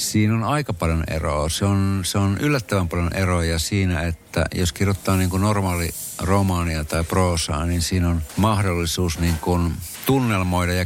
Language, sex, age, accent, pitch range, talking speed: Finnish, male, 60-79, native, 85-100 Hz, 140 wpm